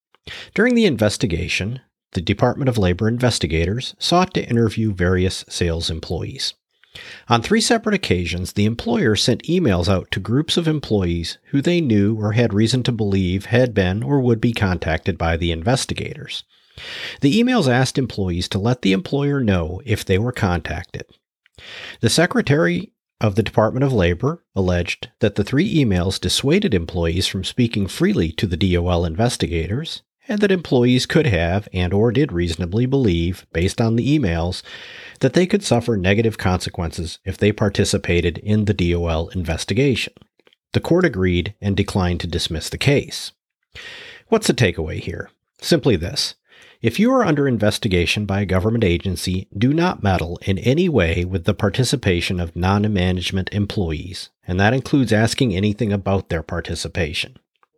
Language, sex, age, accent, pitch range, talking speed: English, male, 40-59, American, 90-125 Hz, 155 wpm